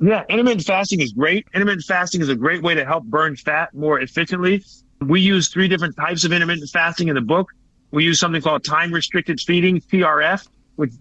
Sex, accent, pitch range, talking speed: male, American, 145-180 Hz, 195 wpm